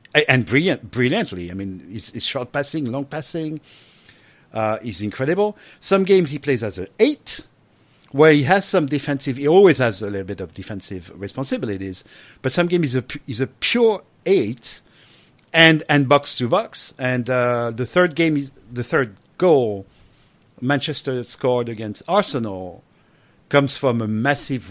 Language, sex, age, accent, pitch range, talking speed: English, male, 50-69, French, 110-155 Hz, 160 wpm